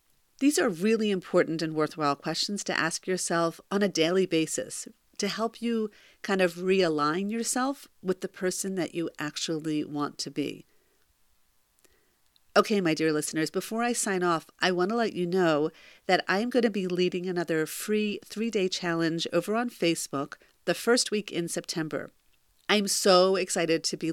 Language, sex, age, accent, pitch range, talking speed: English, female, 40-59, American, 165-210 Hz, 165 wpm